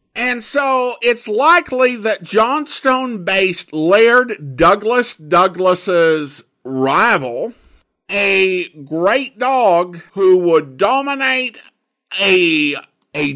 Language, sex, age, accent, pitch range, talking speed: English, male, 50-69, American, 150-225 Hz, 80 wpm